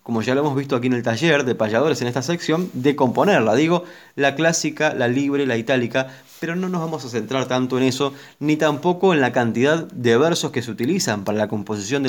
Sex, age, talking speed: male, 20-39, 230 wpm